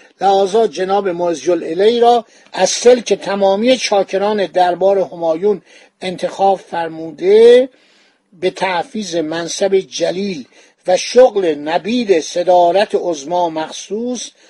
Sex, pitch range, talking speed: male, 175-220 Hz, 100 wpm